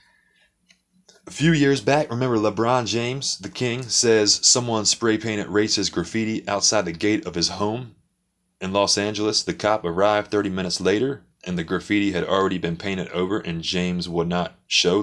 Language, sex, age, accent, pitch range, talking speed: English, male, 20-39, American, 90-120 Hz, 170 wpm